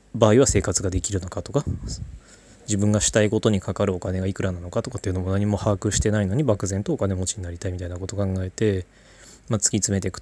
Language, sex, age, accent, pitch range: Japanese, male, 20-39, native, 95-120 Hz